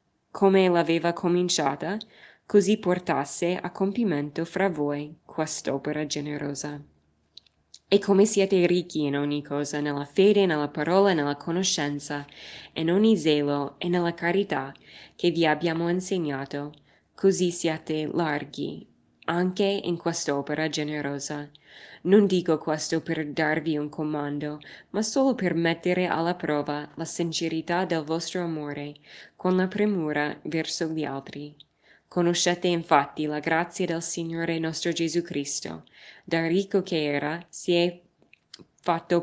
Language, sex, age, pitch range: Italian, female, 20-39, 150-175 Hz